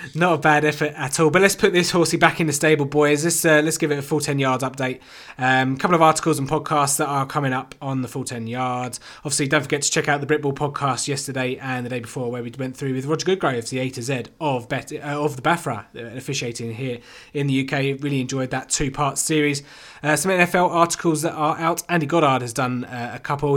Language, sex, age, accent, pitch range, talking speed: English, male, 20-39, British, 125-155 Hz, 245 wpm